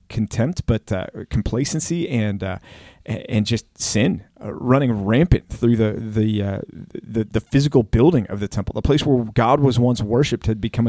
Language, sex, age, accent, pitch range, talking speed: English, male, 30-49, American, 105-125 Hz, 170 wpm